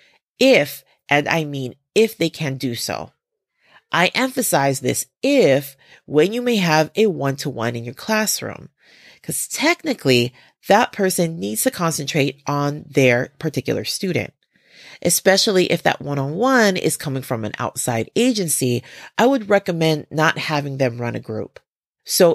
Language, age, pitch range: English, 30-49, 135-180 Hz